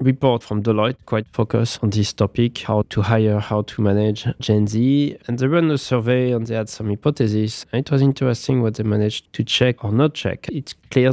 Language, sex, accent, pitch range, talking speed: English, male, French, 105-130 Hz, 210 wpm